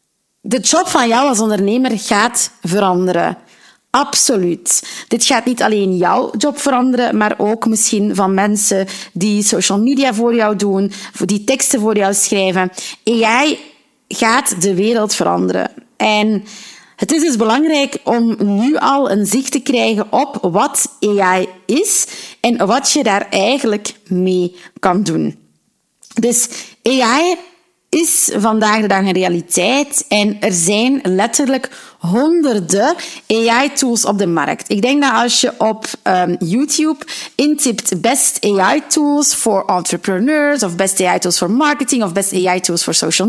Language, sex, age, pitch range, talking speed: Dutch, female, 30-49, 195-265 Hz, 140 wpm